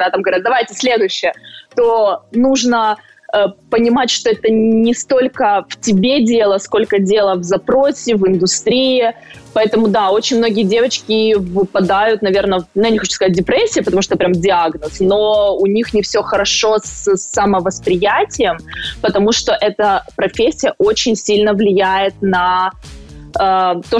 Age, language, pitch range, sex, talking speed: 20-39, Ukrainian, 200-245 Hz, female, 145 wpm